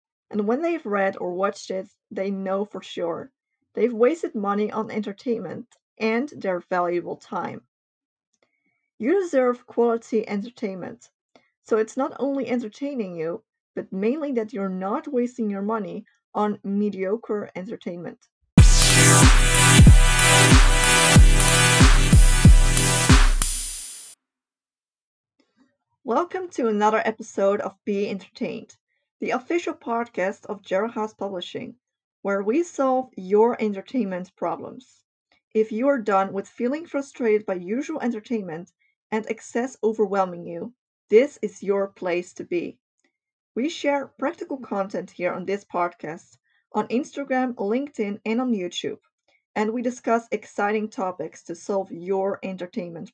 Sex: female